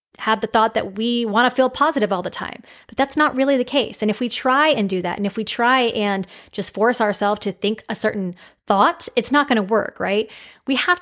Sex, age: female, 20-39